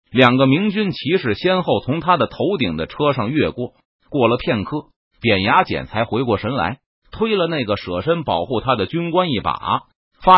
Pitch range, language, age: 110-170 Hz, Chinese, 30-49